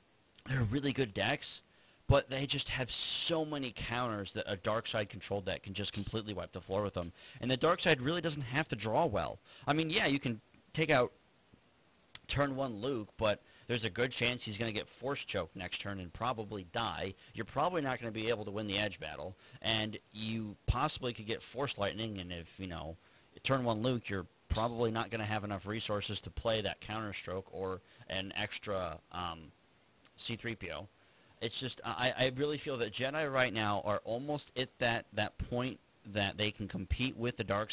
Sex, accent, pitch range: male, American, 100-125 Hz